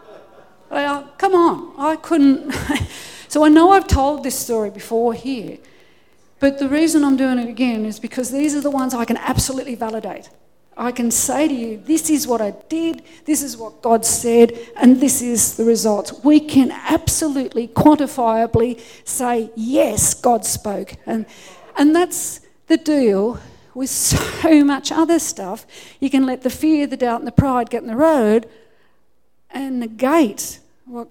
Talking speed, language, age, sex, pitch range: 165 wpm, English, 50-69, female, 230-295 Hz